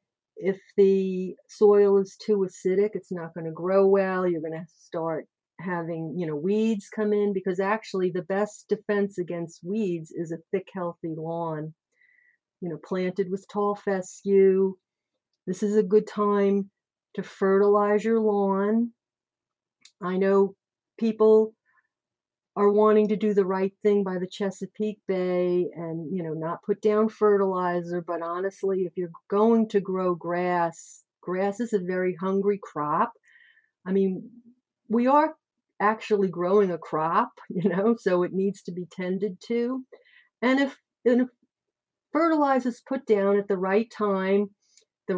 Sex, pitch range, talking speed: female, 180-215 Hz, 150 wpm